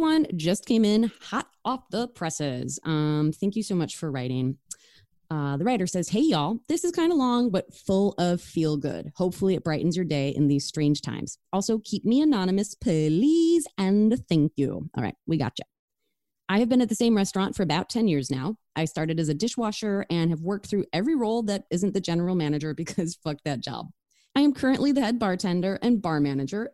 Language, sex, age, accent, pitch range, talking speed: English, female, 20-39, American, 155-215 Hz, 210 wpm